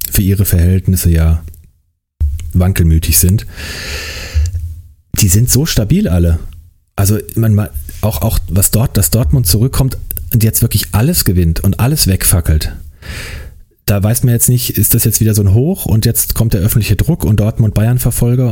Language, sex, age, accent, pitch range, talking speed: German, male, 30-49, German, 85-110 Hz, 160 wpm